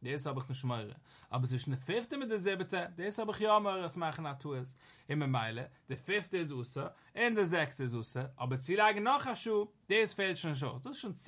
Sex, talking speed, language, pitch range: male, 115 wpm, English, 135-200 Hz